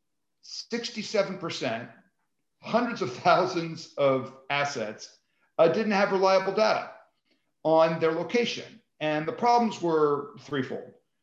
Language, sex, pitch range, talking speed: English, male, 145-195 Hz, 95 wpm